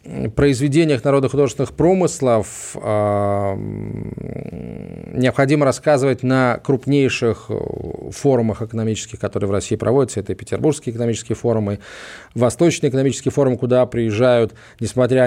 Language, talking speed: Russian, 105 wpm